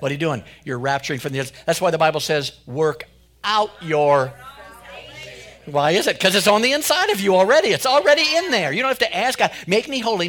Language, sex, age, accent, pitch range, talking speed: English, male, 50-69, American, 145-200 Hz, 235 wpm